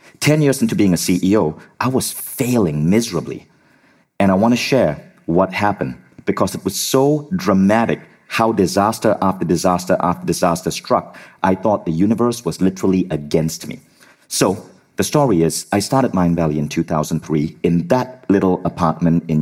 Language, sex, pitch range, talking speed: English, male, 85-120 Hz, 160 wpm